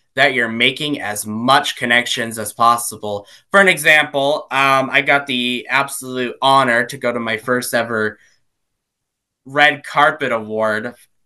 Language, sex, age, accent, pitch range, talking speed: English, male, 20-39, American, 120-155 Hz, 140 wpm